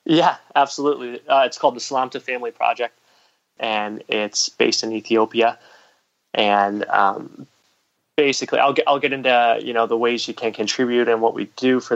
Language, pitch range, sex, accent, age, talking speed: English, 110-125 Hz, male, American, 20-39, 170 wpm